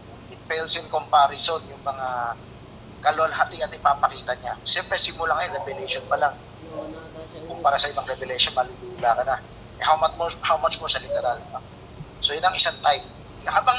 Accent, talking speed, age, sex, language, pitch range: native, 155 wpm, 40-59, male, Filipino, 125-160 Hz